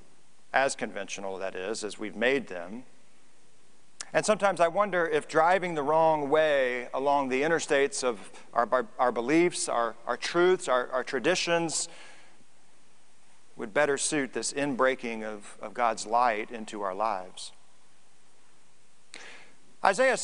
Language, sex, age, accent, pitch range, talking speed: English, male, 40-59, American, 130-190 Hz, 130 wpm